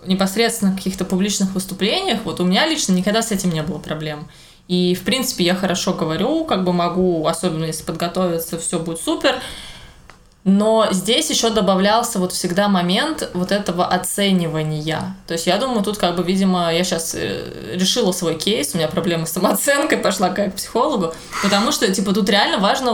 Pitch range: 175-215 Hz